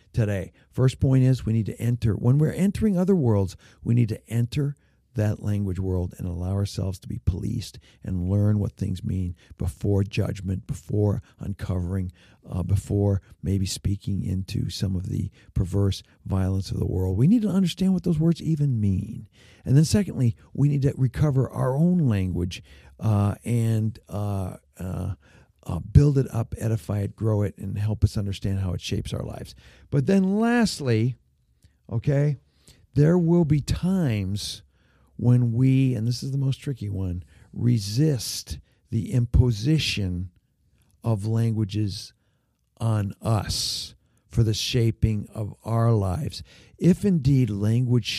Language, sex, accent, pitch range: English, male, American, 95-125 Hz